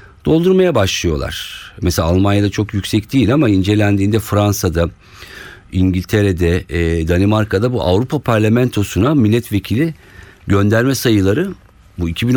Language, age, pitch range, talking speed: Turkish, 50-69, 85-125 Hz, 90 wpm